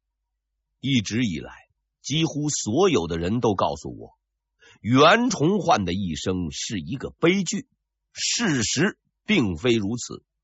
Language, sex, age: Chinese, male, 50-69